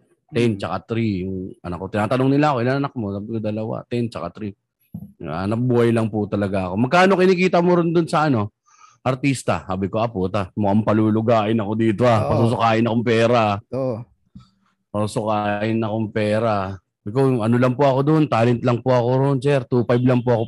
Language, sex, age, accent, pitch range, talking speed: Filipino, male, 20-39, native, 110-130 Hz, 175 wpm